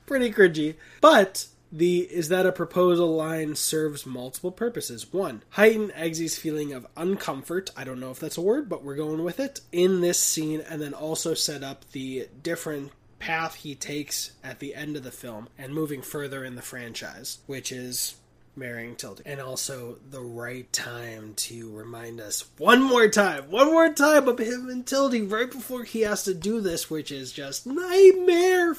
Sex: male